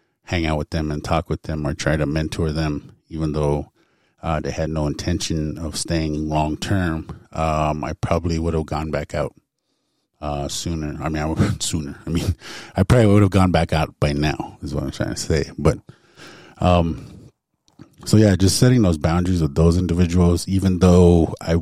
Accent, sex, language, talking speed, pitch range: American, male, English, 190 wpm, 75-90 Hz